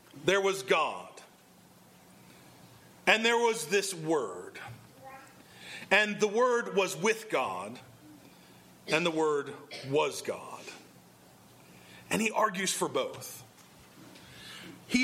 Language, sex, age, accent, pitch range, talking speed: English, male, 40-59, American, 165-230 Hz, 100 wpm